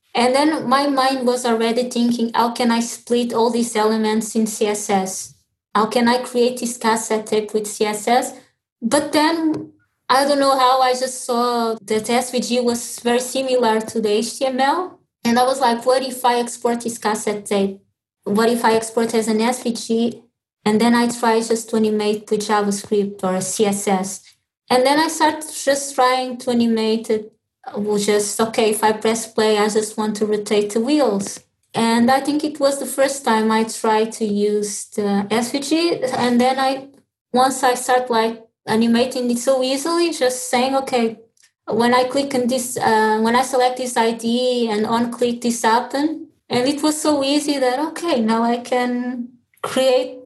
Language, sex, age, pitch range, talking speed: English, female, 20-39, 220-255 Hz, 180 wpm